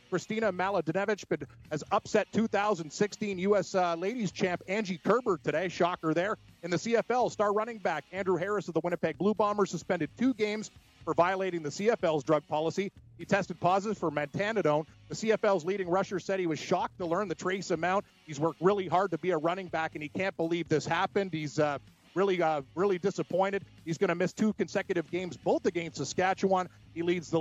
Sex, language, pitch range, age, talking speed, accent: male, English, 165-195 Hz, 40-59, 195 wpm, American